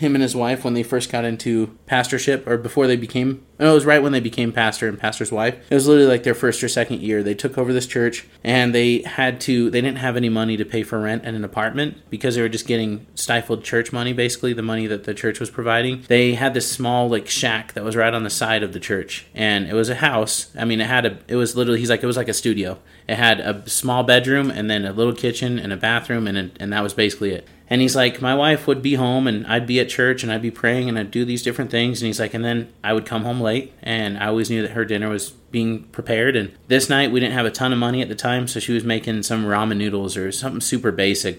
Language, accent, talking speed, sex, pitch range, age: English, American, 280 wpm, male, 110-125 Hz, 30-49